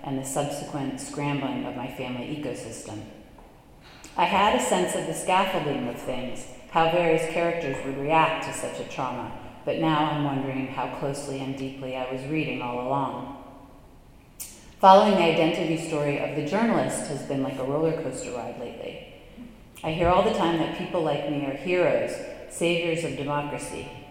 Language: English